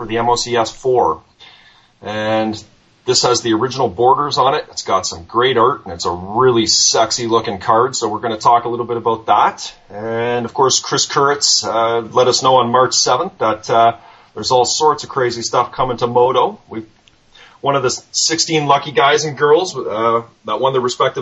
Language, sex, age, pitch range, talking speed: English, male, 30-49, 110-125 Hz, 200 wpm